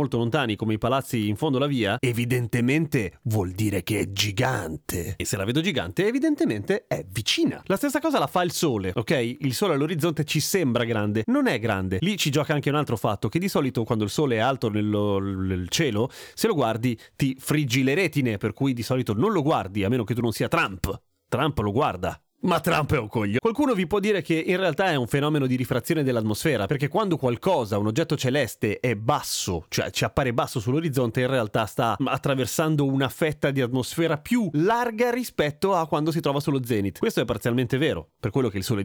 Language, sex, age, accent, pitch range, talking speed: Italian, male, 30-49, native, 110-160 Hz, 215 wpm